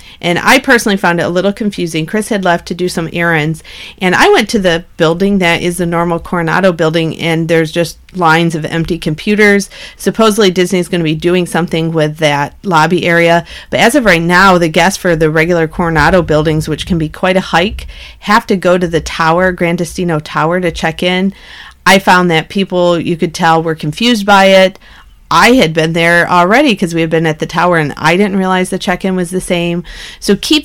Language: English